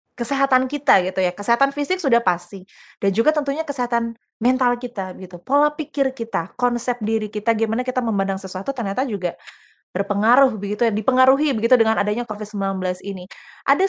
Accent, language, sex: native, Indonesian, female